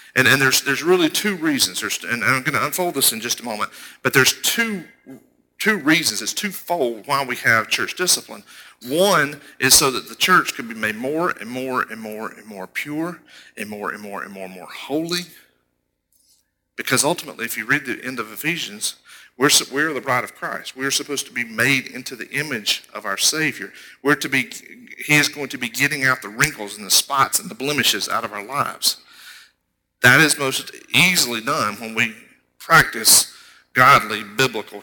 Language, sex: English, male